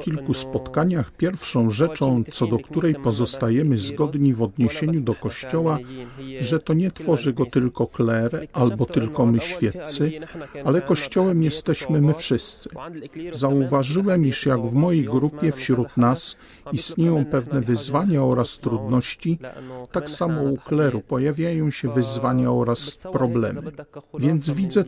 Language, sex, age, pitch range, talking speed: Polish, male, 50-69, 125-155 Hz, 130 wpm